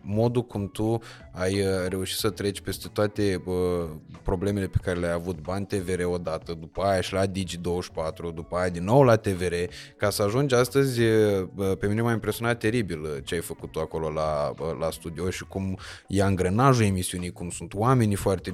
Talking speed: 175 wpm